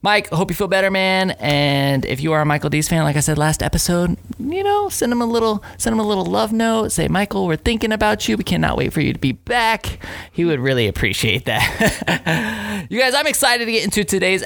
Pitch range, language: 140-200 Hz, English